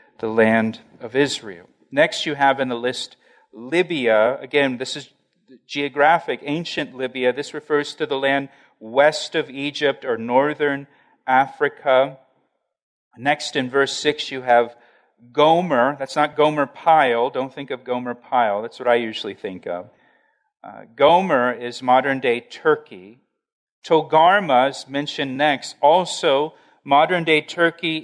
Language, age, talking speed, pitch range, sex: English, 40-59, 130 wpm, 140-185 Hz, male